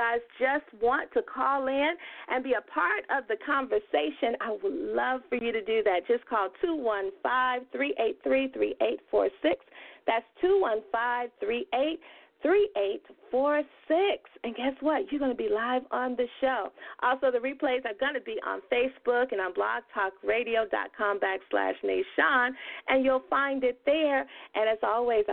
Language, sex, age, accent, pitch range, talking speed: English, female, 40-59, American, 235-330 Hz, 185 wpm